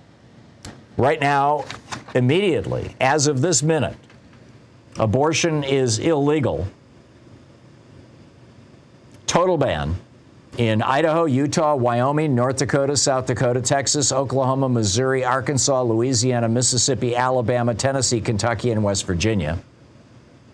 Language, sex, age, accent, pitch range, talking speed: English, male, 50-69, American, 115-135 Hz, 95 wpm